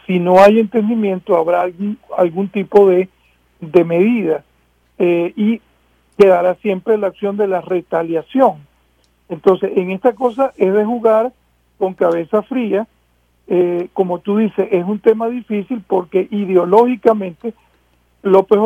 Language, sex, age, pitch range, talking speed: English, male, 50-69, 175-215 Hz, 130 wpm